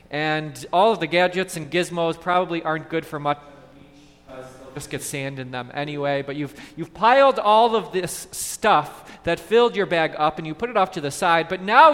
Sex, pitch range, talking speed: male, 135-185 Hz, 205 wpm